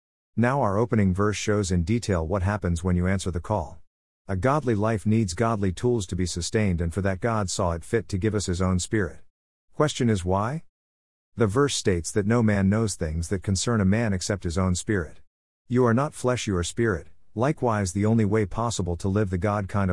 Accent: American